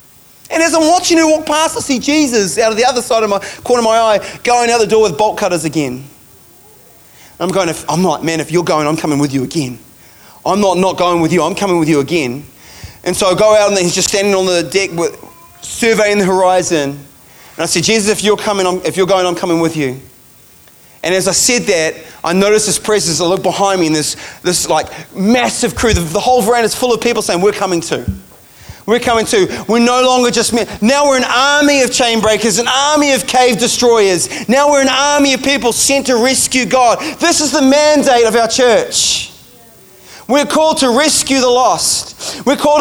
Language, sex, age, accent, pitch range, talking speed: English, male, 30-49, Australian, 190-275 Hz, 225 wpm